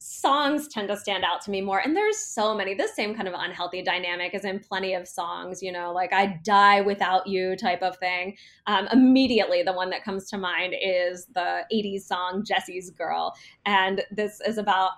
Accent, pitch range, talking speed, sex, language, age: American, 195-255 Hz, 205 wpm, female, English, 20-39